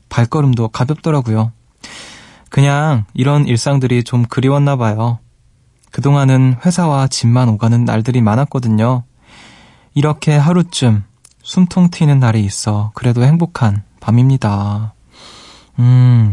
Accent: native